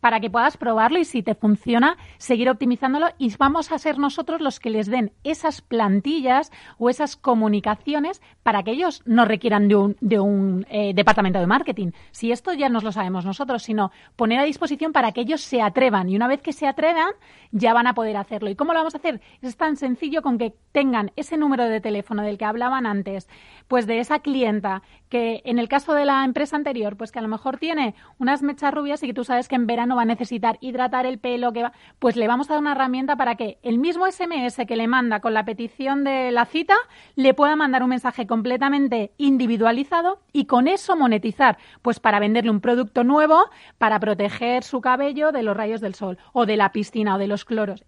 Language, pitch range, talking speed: Spanish, 220-280 Hz, 220 wpm